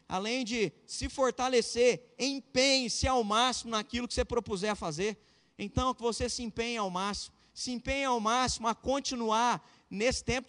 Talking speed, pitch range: 160 wpm, 225-260 Hz